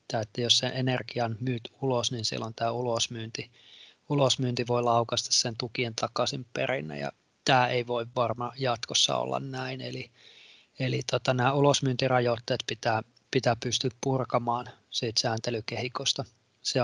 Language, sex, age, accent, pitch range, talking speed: Finnish, male, 20-39, native, 120-130 Hz, 130 wpm